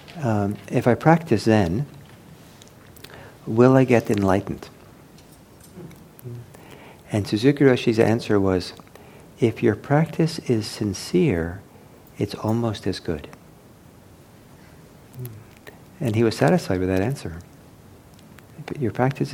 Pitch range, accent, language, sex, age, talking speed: 100-140 Hz, American, English, male, 50-69, 100 wpm